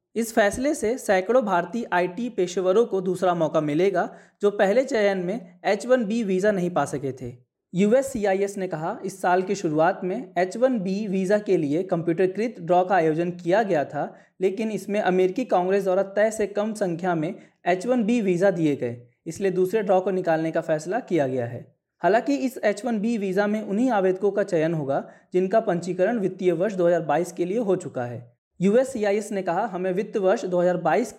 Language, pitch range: Hindi, 175-215 Hz